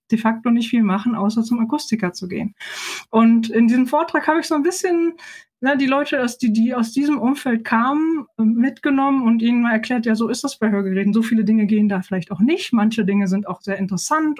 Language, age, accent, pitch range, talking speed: German, 20-39, German, 205-255 Hz, 215 wpm